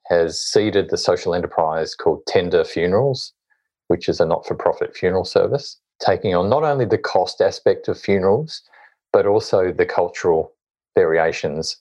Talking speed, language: 140 wpm, English